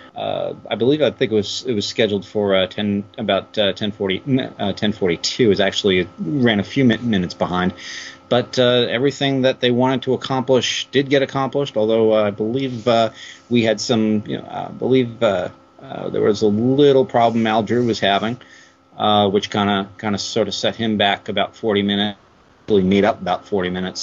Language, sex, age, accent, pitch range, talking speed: English, male, 40-59, American, 100-120 Hz, 195 wpm